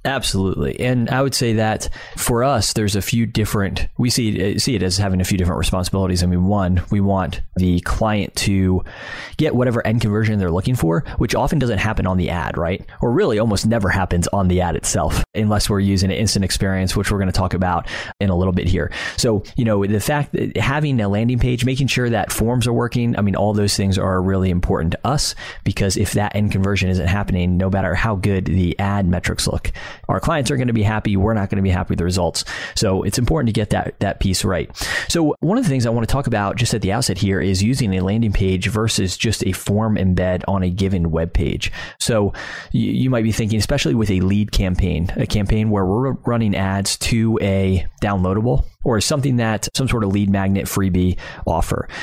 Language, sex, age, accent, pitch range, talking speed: English, male, 20-39, American, 95-115 Hz, 225 wpm